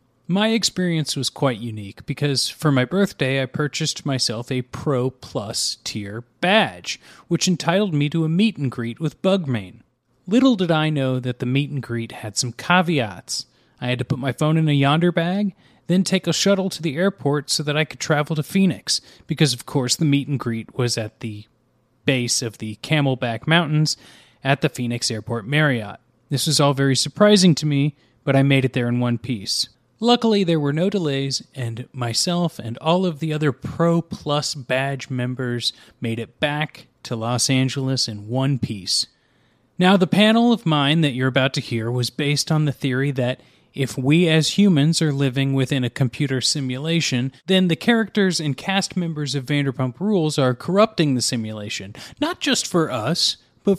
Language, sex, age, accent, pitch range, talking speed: English, male, 30-49, American, 125-165 Hz, 180 wpm